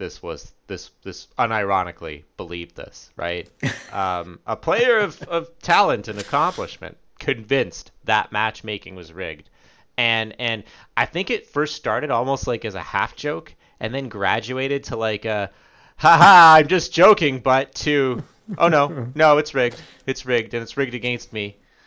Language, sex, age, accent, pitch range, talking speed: English, male, 30-49, American, 110-155 Hz, 160 wpm